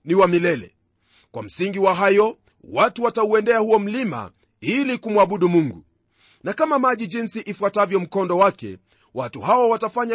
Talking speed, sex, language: 135 wpm, male, Swahili